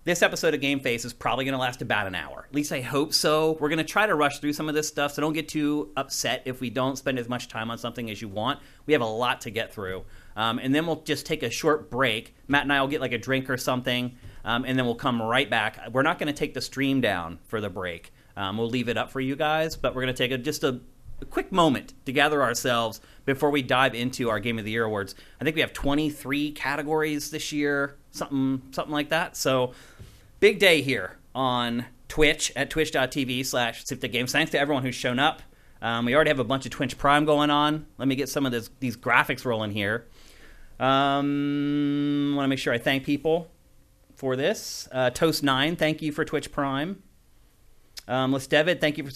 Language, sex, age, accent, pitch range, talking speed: English, male, 30-49, American, 125-150 Hz, 235 wpm